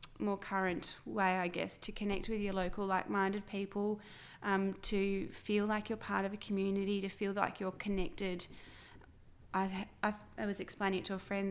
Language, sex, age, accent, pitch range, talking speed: English, female, 20-39, Australian, 190-210 Hz, 165 wpm